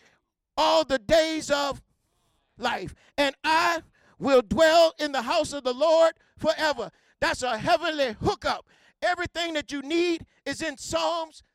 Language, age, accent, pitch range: English, 50-69, American, 255-315 Hz